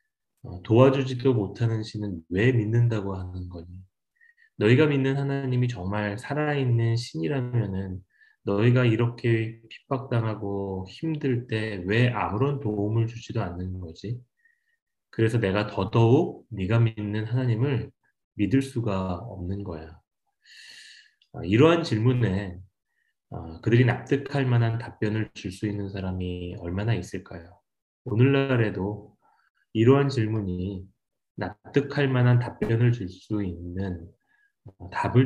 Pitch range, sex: 95-125 Hz, male